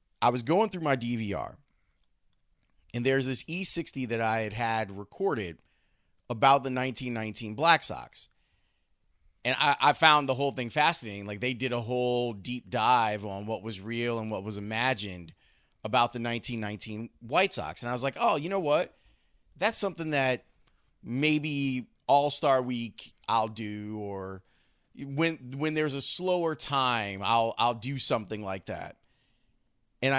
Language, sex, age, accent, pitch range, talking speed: English, male, 30-49, American, 110-135 Hz, 155 wpm